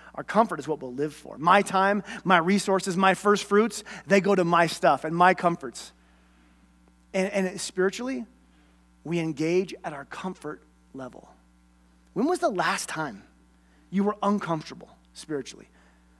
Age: 30-49